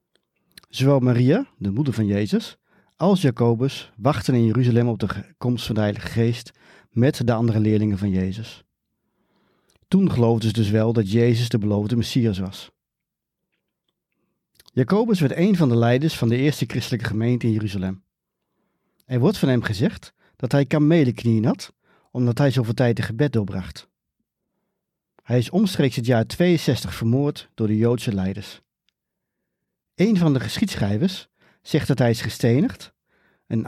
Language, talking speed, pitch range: Dutch, 150 wpm, 110-145 Hz